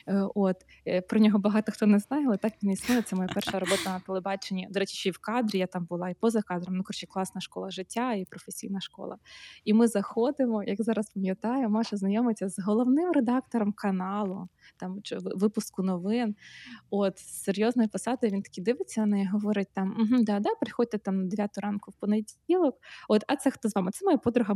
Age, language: 20-39, Ukrainian